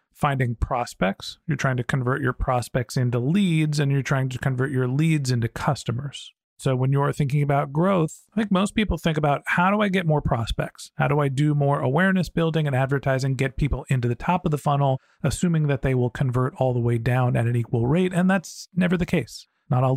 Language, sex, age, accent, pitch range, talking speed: English, male, 40-59, American, 130-160 Hz, 225 wpm